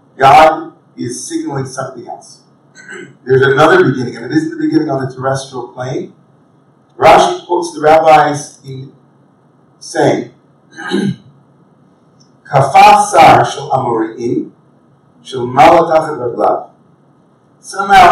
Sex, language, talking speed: male, English, 75 wpm